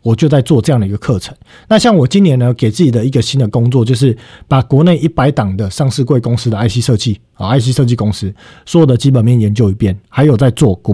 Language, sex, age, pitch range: Chinese, male, 50-69, 105-145 Hz